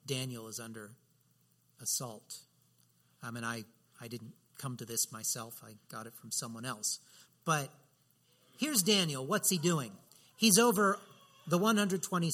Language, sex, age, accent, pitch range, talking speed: English, male, 50-69, American, 115-175 Hz, 140 wpm